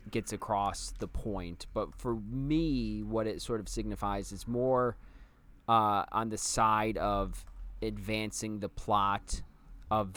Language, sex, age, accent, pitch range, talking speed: English, male, 20-39, American, 90-110 Hz, 135 wpm